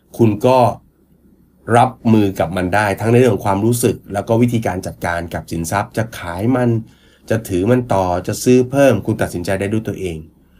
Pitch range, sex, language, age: 100-160 Hz, male, Thai, 30-49